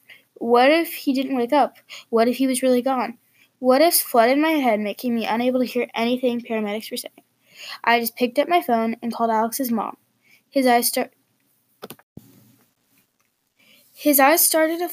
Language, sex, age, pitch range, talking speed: English, female, 10-29, 225-275 Hz, 165 wpm